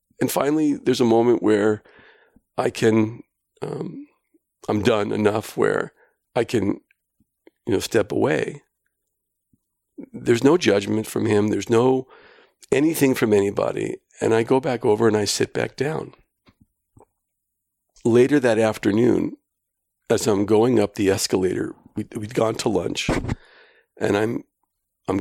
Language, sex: English, male